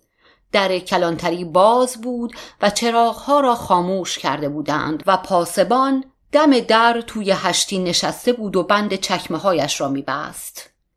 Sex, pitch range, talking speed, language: female, 170-235 Hz, 130 wpm, Persian